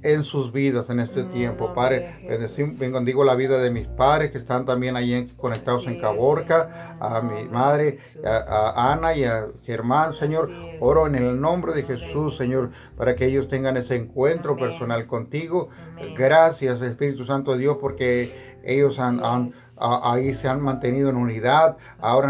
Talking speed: 170 wpm